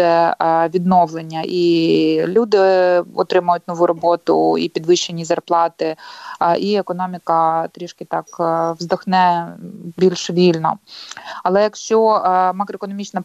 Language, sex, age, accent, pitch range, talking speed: Ukrainian, female, 20-39, native, 175-195 Hz, 85 wpm